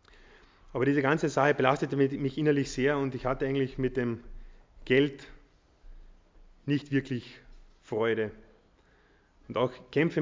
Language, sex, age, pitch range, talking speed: German, male, 30-49, 120-145 Hz, 125 wpm